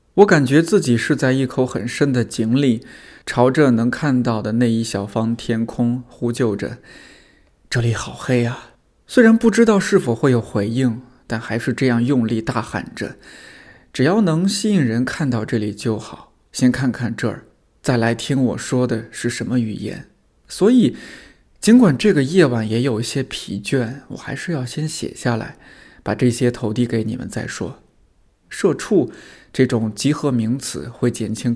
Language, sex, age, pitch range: Chinese, male, 20-39, 115-130 Hz